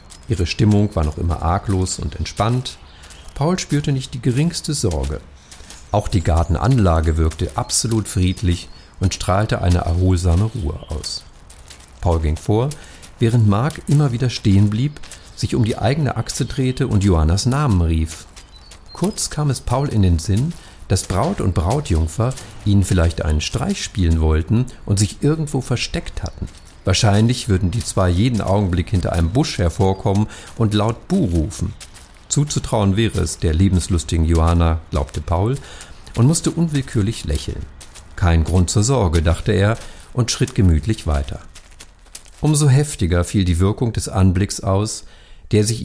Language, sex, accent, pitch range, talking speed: German, male, German, 85-115 Hz, 150 wpm